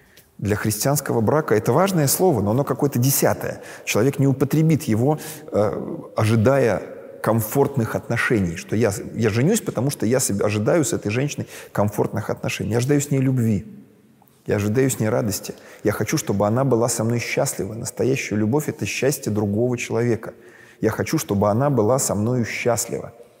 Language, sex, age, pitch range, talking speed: Russian, male, 20-39, 105-135 Hz, 160 wpm